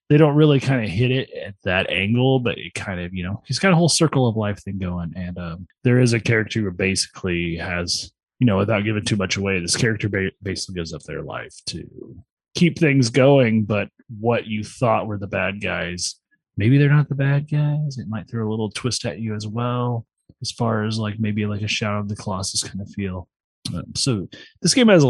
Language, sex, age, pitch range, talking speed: English, male, 20-39, 90-125 Hz, 230 wpm